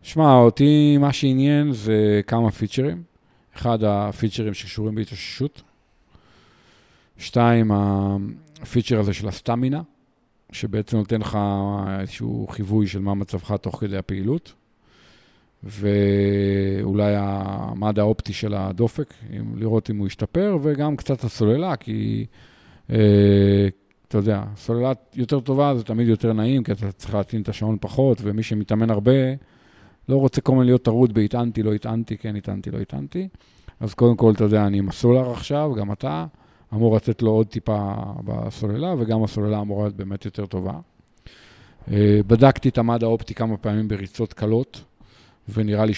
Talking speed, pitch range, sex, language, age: 140 wpm, 100-120 Hz, male, Hebrew, 40-59